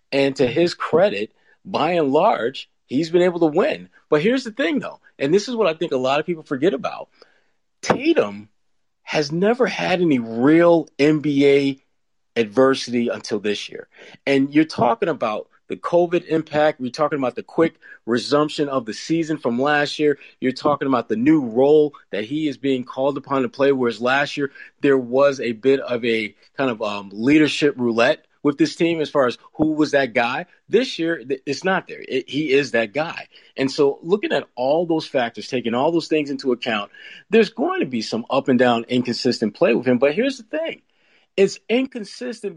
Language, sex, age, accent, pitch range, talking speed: English, male, 40-59, American, 130-175 Hz, 195 wpm